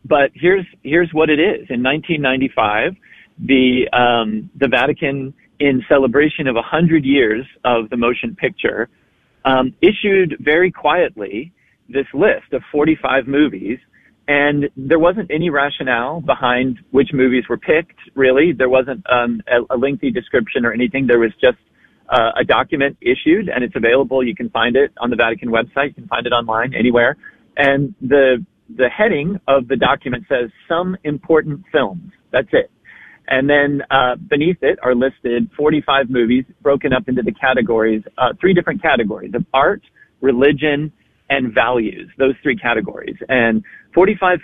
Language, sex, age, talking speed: English, male, 40-59, 155 wpm